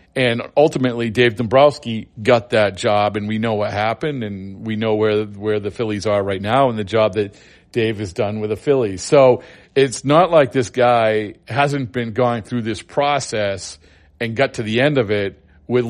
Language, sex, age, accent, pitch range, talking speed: English, male, 40-59, American, 105-125 Hz, 195 wpm